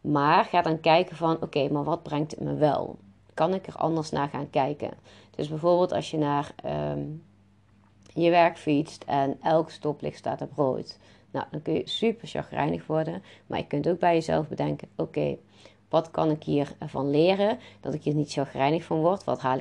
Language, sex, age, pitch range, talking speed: Dutch, female, 30-49, 140-165 Hz, 195 wpm